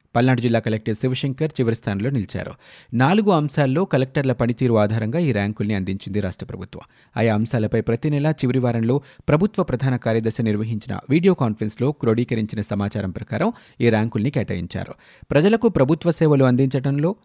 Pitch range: 110-145 Hz